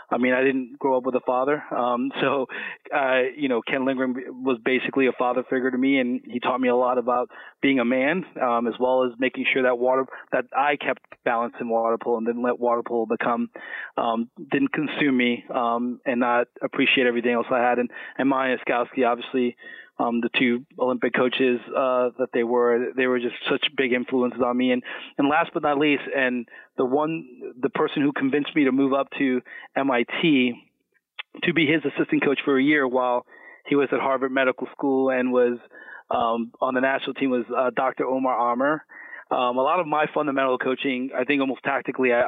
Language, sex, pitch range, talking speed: English, male, 125-135 Hz, 205 wpm